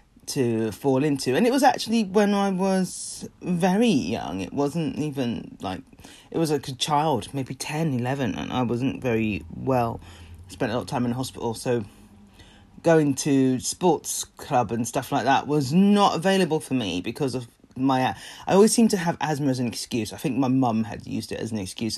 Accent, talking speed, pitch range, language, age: British, 200 wpm, 120-180 Hz, English, 30-49